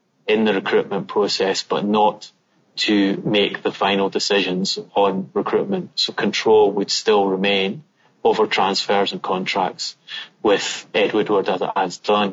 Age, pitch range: 30-49, 100-120 Hz